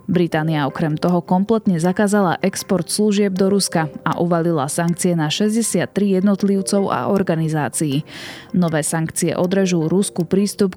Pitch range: 165-200 Hz